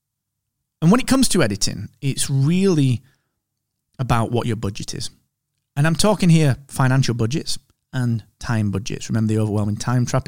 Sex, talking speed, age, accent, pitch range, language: male, 160 wpm, 30-49, British, 110-150 Hz, English